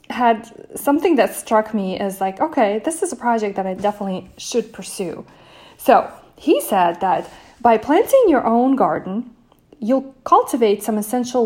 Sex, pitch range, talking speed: female, 210-265 Hz, 155 wpm